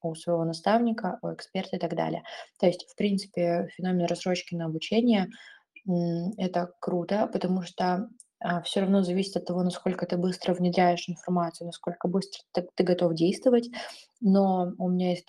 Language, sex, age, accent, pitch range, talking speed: Russian, female, 20-39, native, 175-195 Hz, 155 wpm